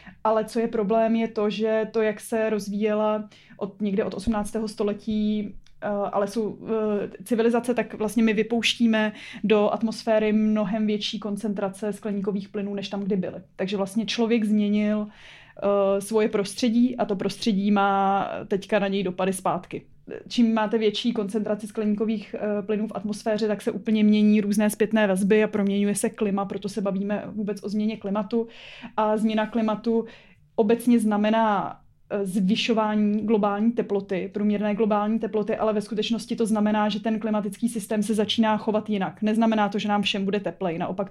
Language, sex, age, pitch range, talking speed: Czech, female, 20-39, 205-220 Hz, 155 wpm